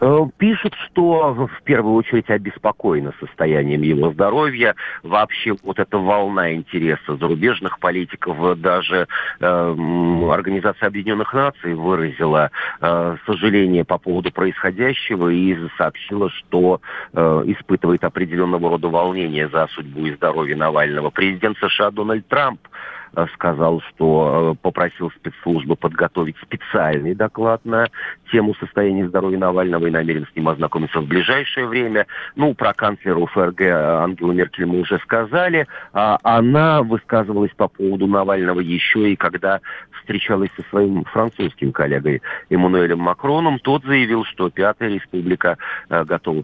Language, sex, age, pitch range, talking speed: Russian, male, 50-69, 85-110 Hz, 120 wpm